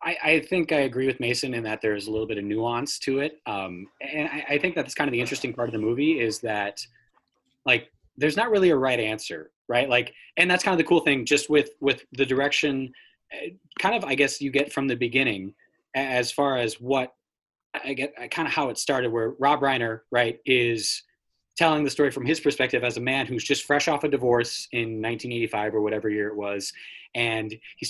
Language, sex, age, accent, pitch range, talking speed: English, male, 20-39, American, 115-140 Hz, 220 wpm